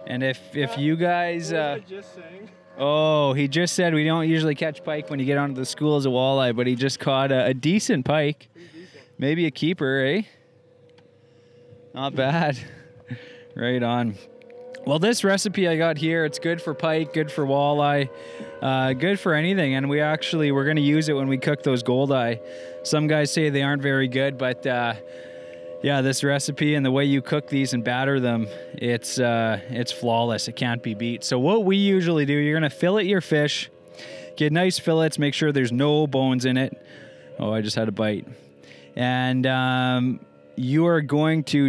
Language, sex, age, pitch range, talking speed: English, male, 20-39, 125-155 Hz, 190 wpm